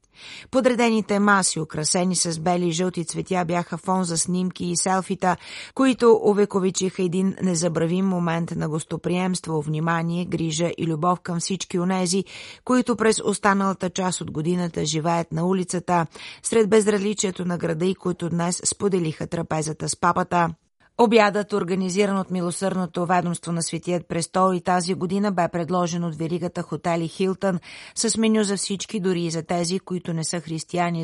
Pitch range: 170-190 Hz